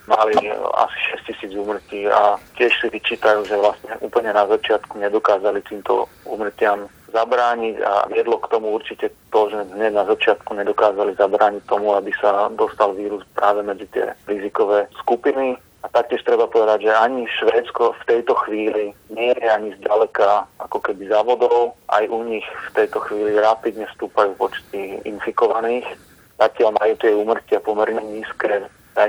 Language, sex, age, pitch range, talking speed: Slovak, male, 40-59, 105-115 Hz, 150 wpm